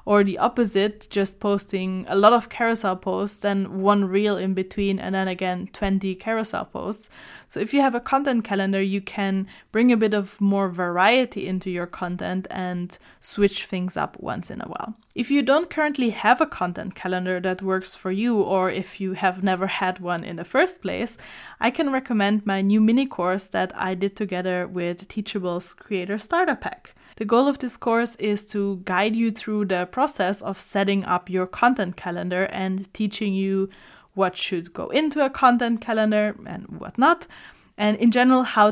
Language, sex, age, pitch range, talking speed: English, female, 10-29, 190-230 Hz, 190 wpm